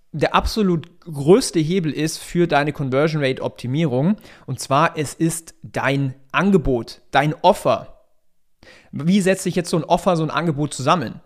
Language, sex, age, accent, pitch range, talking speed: German, male, 40-59, German, 140-185 Hz, 145 wpm